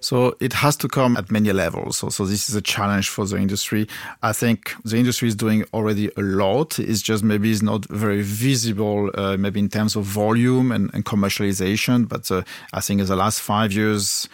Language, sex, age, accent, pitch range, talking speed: English, male, 40-59, French, 100-120 Hz, 215 wpm